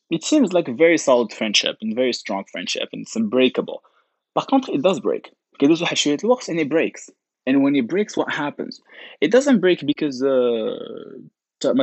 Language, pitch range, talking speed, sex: Arabic, 110-165 Hz, 200 wpm, male